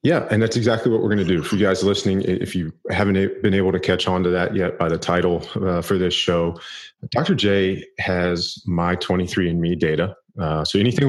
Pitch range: 80-100 Hz